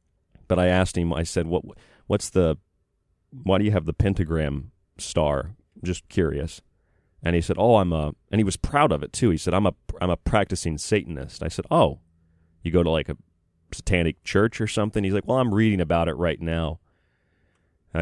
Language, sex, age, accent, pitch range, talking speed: English, male, 30-49, American, 75-95 Hz, 205 wpm